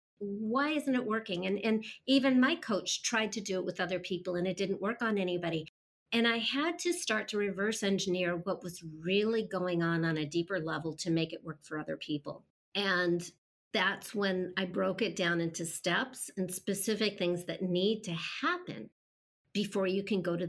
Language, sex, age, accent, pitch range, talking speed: English, female, 50-69, American, 175-205 Hz, 195 wpm